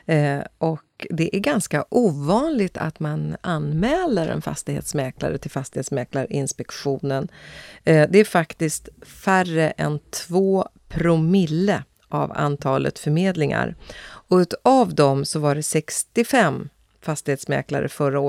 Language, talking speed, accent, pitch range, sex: Swedish, 100 wpm, native, 150-190 Hz, female